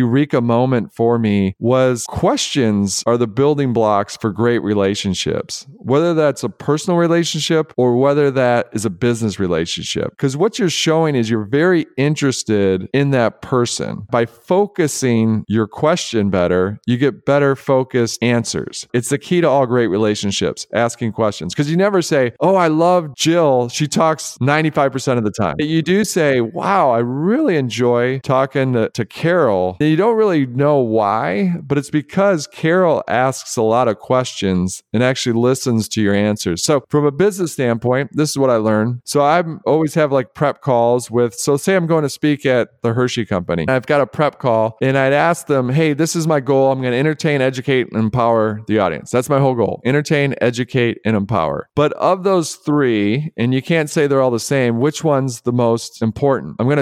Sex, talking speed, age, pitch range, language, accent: male, 190 wpm, 40-59, 115-150 Hz, English, American